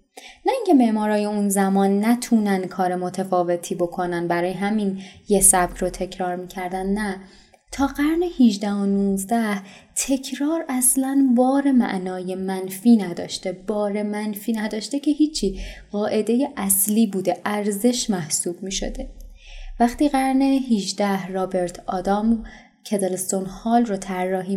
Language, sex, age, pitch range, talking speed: Persian, female, 20-39, 185-235 Hz, 115 wpm